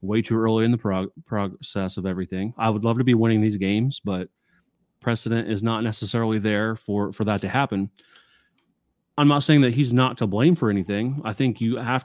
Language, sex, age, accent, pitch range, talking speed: English, male, 30-49, American, 100-130 Hz, 210 wpm